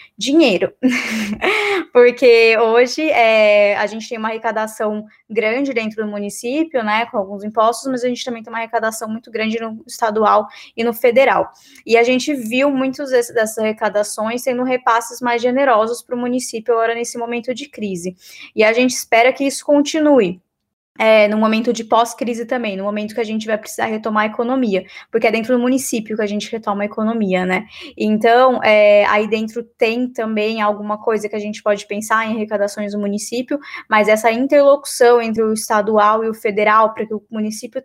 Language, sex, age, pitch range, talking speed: Portuguese, female, 20-39, 210-245 Hz, 180 wpm